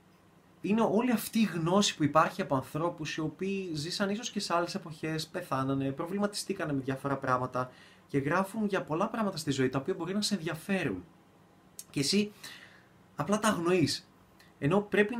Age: 20-39